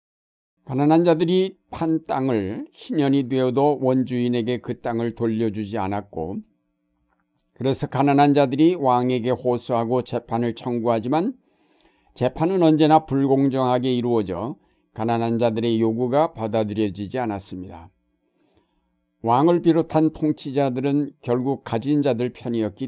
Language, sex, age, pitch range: Korean, male, 60-79, 115-140 Hz